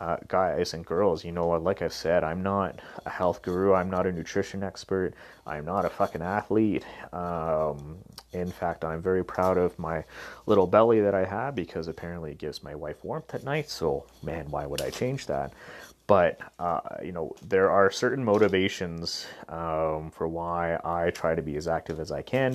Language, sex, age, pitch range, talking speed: English, male, 30-49, 80-100 Hz, 190 wpm